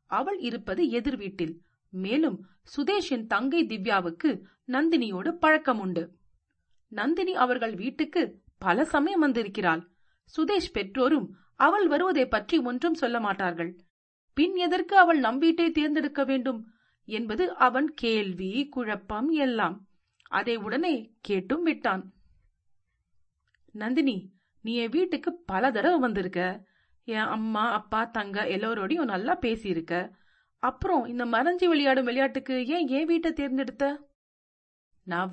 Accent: native